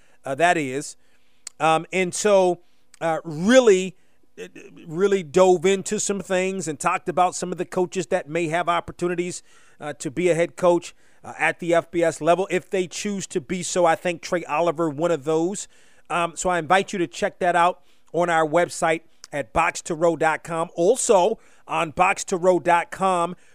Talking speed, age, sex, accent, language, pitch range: 175 wpm, 40-59, male, American, English, 170-195 Hz